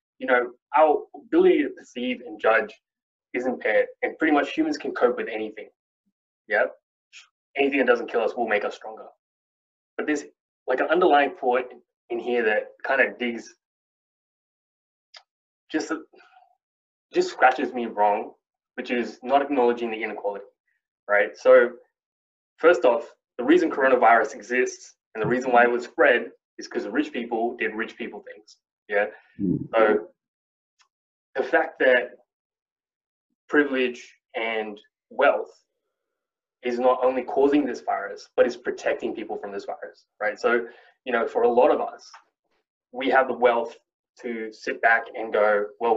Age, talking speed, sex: 20-39, 150 wpm, male